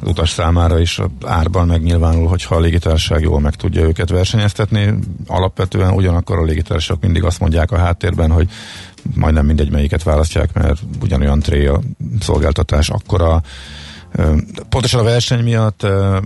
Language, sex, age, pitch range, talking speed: Hungarian, male, 50-69, 85-100 Hz, 135 wpm